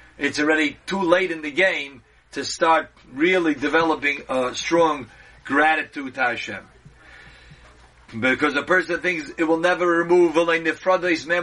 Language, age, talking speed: English, 50-69, 140 wpm